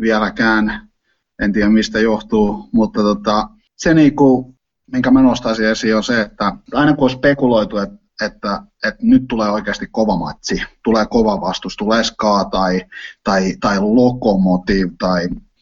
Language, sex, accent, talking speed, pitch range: Finnish, male, native, 155 wpm, 100-130 Hz